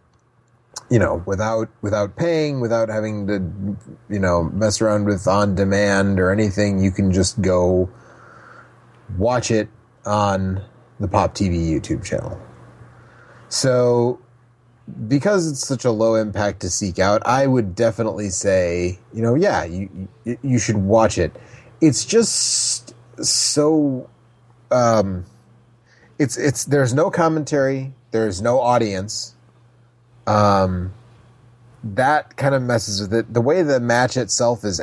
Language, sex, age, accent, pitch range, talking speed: English, male, 30-49, American, 105-135 Hz, 130 wpm